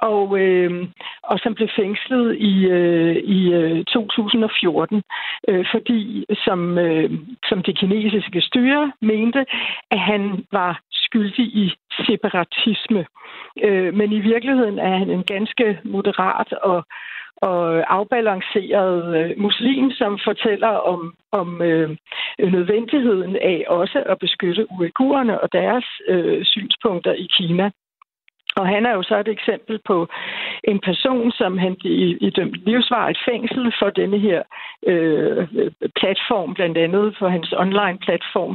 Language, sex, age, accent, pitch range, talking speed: Danish, female, 60-79, native, 185-230 Hz, 130 wpm